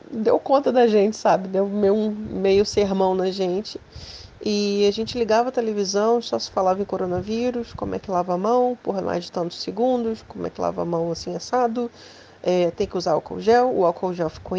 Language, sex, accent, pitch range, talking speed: Portuguese, female, Brazilian, 185-225 Hz, 205 wpm